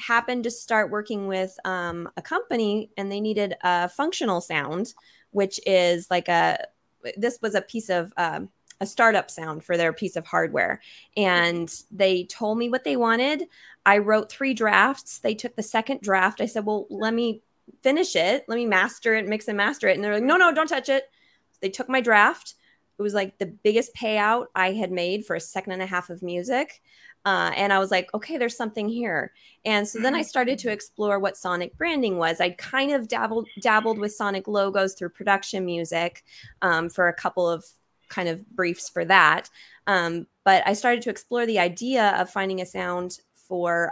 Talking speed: 200 wpm